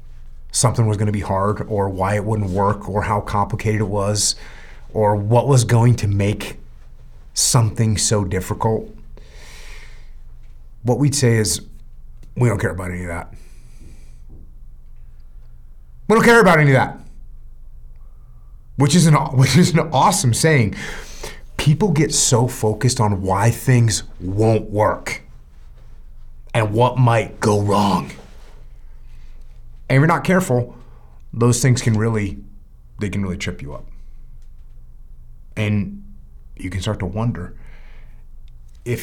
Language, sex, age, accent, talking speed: English, male, 30-49, American, 130 wpm